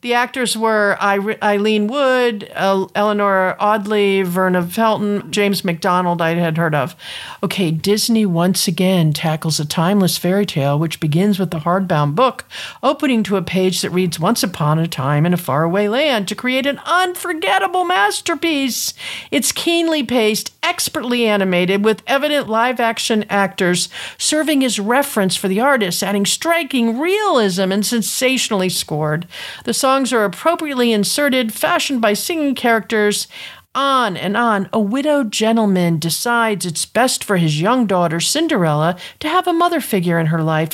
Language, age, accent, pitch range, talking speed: English, 50-69, American, 175-245 Hz, 150 wpm